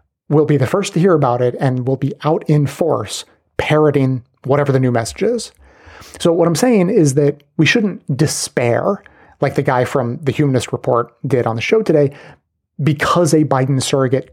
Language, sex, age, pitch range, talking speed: English, male, 30-49, 130-155 Hz, 190 wpm